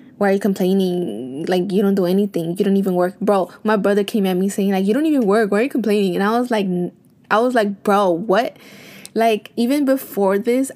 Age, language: 10-29, English